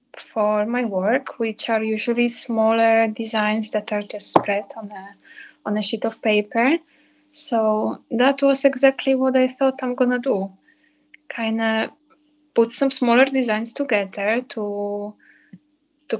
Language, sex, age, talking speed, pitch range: English, female, 20-39, 140 wpm, 215-270 Hz